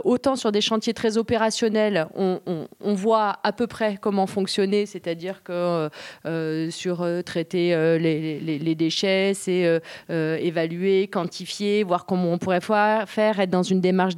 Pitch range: 180-225 Hz